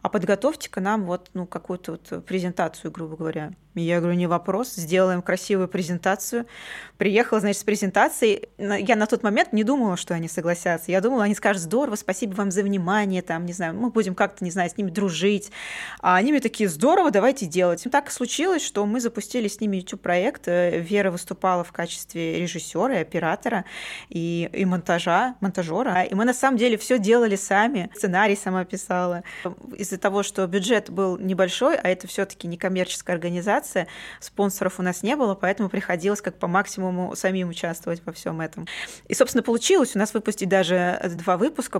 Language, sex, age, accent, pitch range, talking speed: Russian, female, 20-39, native, 180-220 Hz, 180 wpm